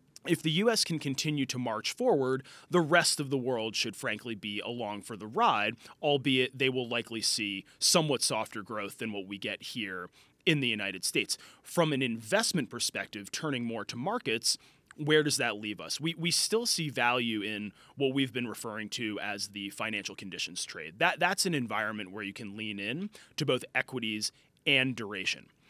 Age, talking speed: 30-49, 185 wpm